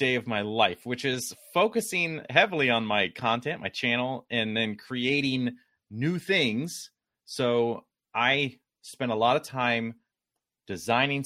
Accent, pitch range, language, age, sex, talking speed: American, 105-135 Hz, English, 30-49, male, 140 wpm